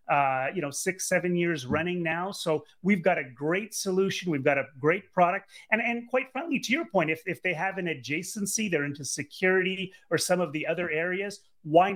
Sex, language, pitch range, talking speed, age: male, English, 160-200 Hz, 210 wpm, 30-49